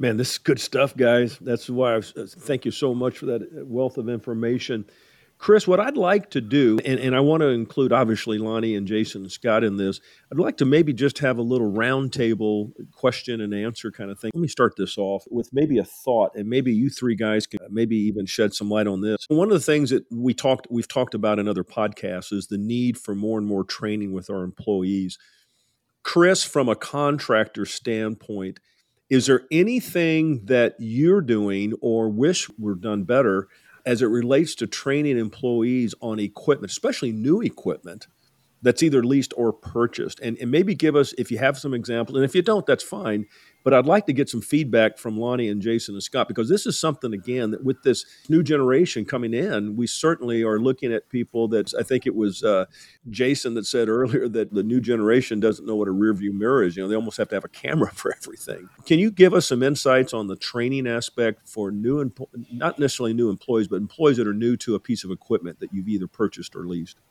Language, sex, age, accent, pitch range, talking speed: English, male, 50-69, American, 110-135 Hz, 215 wpm